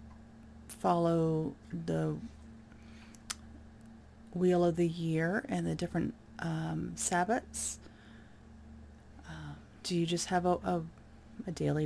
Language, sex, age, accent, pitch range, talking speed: English, female, 30-49, American, 110-185 Hz, 100 wpm